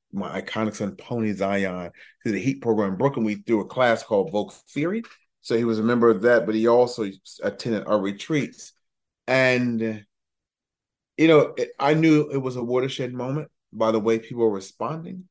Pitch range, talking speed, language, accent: 105-130 Hz, 185 wpm, English, American